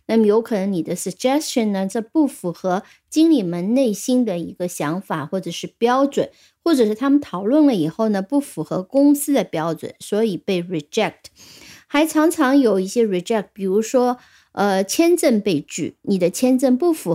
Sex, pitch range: female, 175-260 Hz